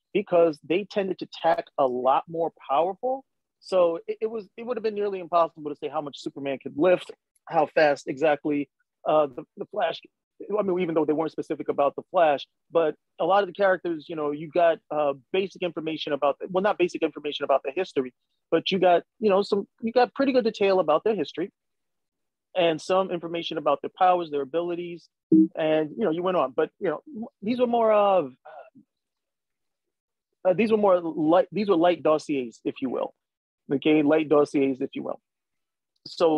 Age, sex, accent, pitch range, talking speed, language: 30-49, male, American, 155-210 Hz, 200 wpm, English